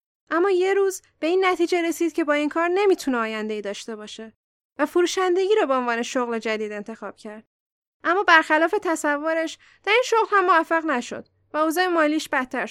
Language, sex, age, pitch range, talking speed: Persian, female, 10-29, 275-360 Hz, 175 wpm